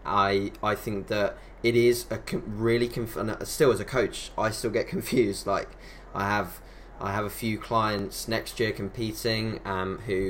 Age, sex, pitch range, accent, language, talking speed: 20-39, male, 100-120 Hz, British, English, 170 wpm